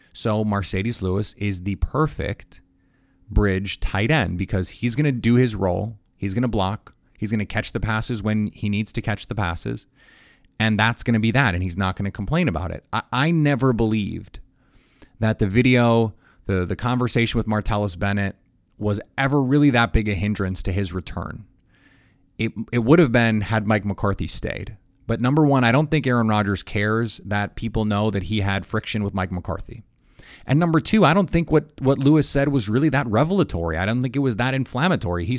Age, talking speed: 30-49, 200 wpm